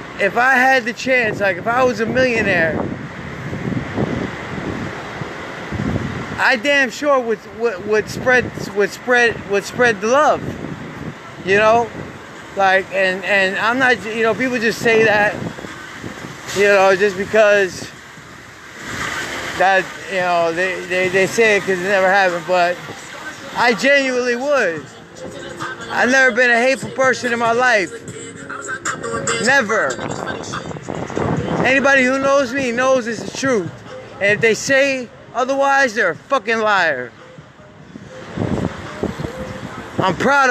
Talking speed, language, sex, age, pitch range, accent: 125 wpm, English, male, 30-49, 200-255 Hz, American